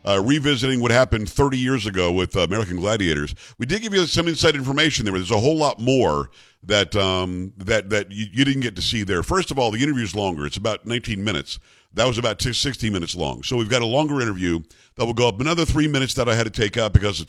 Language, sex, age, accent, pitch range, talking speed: English, male, 50-69, American, 100-135 Hz, 255 wpm